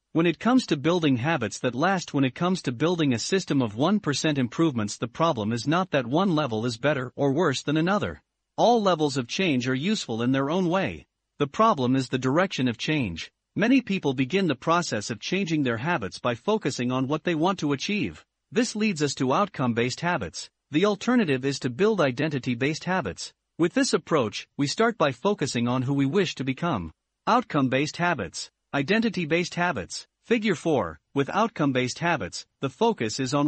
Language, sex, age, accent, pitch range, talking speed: English, male, 50-69, American, 135-190 Hz, 185 wpm